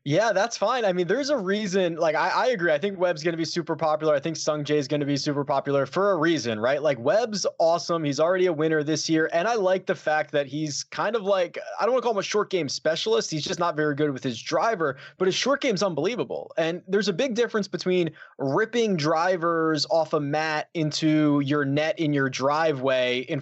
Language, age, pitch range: English, 20-39, 145-190 Hz